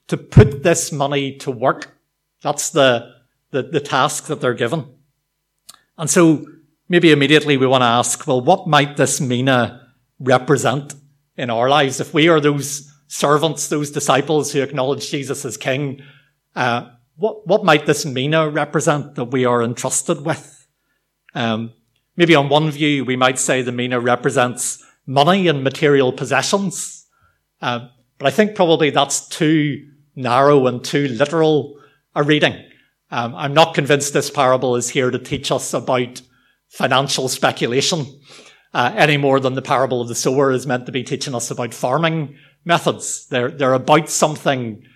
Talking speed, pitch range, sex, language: 160 wpm, 130-155 Hz, male, English